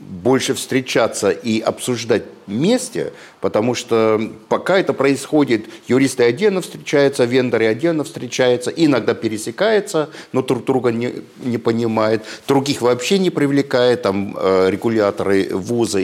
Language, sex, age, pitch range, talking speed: Russian, male, 50-69, 110-145 Hz, 115 wpm